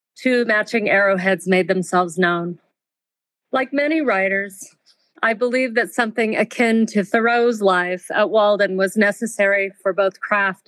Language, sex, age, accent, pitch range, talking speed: English, female, 40-59, American, 195-225 Hz, 135 wpm